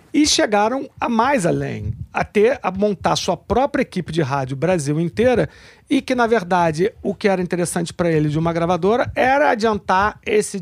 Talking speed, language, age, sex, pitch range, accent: 180 wpm, Portuguese, 50-69, male, 155-220 Hz, Brazilian